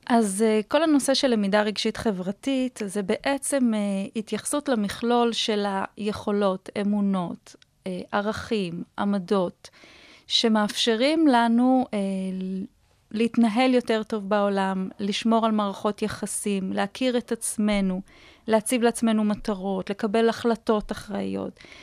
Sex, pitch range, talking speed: female, 205-250 Hz, 105 wpm